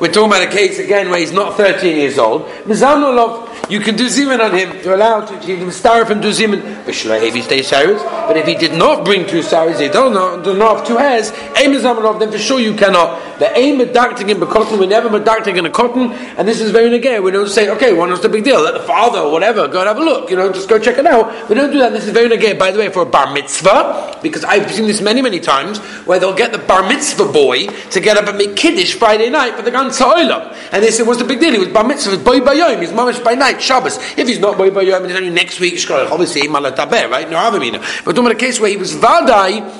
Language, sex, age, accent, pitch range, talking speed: English, male, 40-59, British, 190-250 Hz, 280 wpm